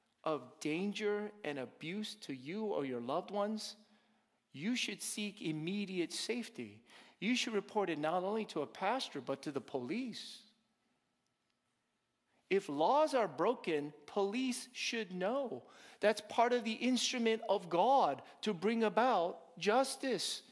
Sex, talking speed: male, 135 wpm